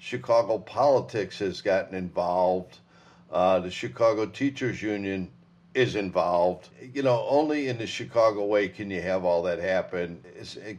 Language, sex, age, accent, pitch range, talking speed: English, male, 50-69, American, 100-130 Hz, 145 wpm